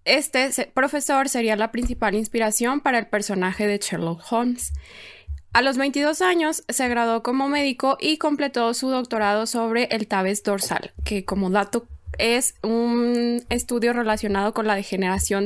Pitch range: 215-265 Hz